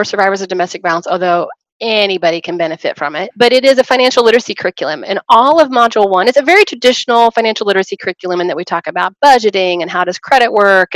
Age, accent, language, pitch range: 30-49, American, English, 185-235 Hz